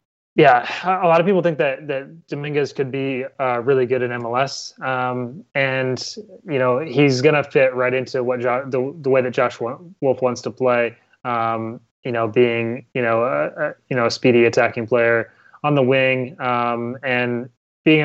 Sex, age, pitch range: male, 20-39, 120-140 Hz